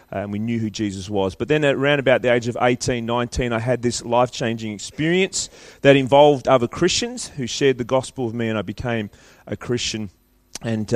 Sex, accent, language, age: male, Australian, English, 30-49